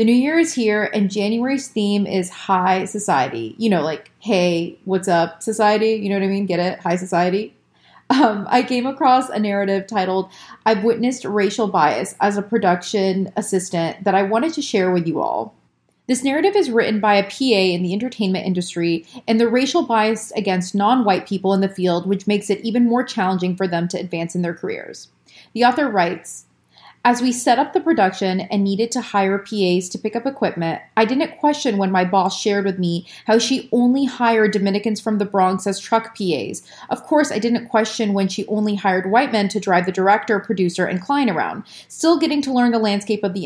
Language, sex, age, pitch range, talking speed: English, female, 30-49, 190-235 Hz, 205 wpm